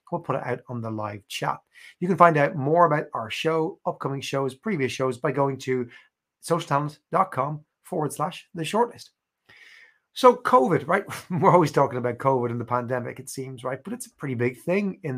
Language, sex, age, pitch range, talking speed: English, male, 30-49, 125-160 Hz, 195 wpm